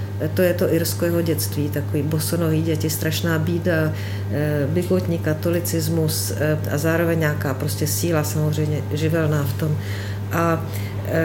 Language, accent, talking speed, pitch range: Czech, native, 135 wpm, 90-105 Hz